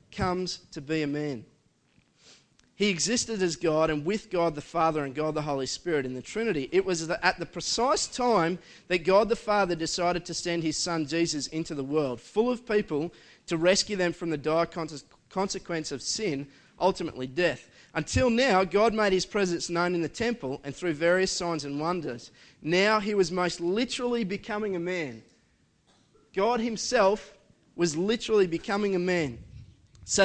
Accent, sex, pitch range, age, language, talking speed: Australian, male, 150-190 Hz, 30-49, English, 175 wpm